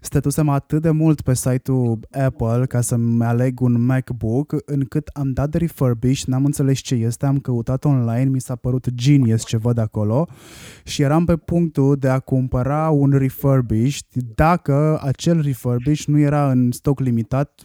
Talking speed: 165 wpm